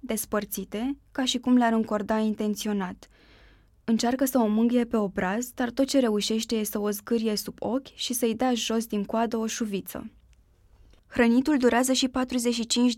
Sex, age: female, 20-39